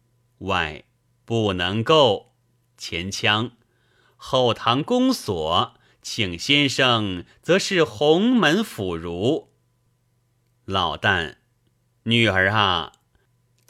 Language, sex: Chinese, male